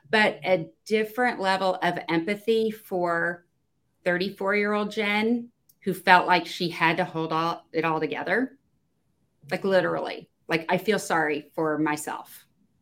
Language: English